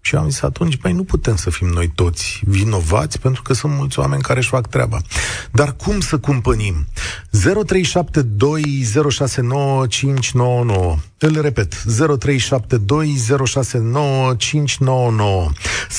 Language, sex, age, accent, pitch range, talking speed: Romanian, male, 40-59, native, 100-135 Hz, 115 wpm